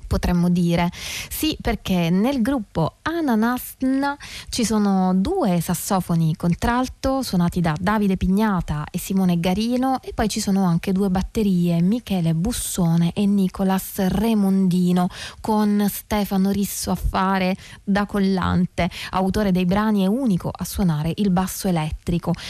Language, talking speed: Italian, 130 wpm